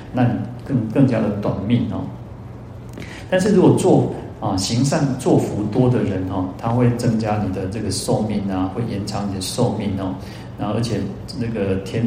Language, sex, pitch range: Chinese, male, 100-130 Hz